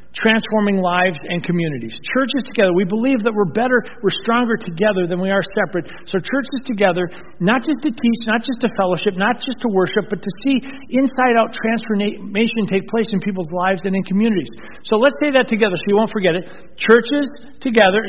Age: 50-69